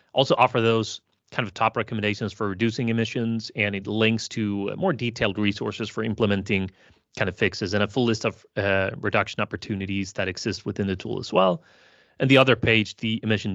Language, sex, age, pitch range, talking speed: English, male, 30-49, 105-120 Hz, 190 wpm